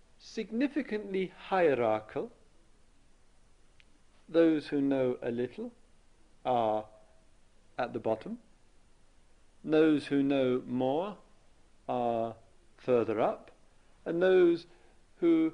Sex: male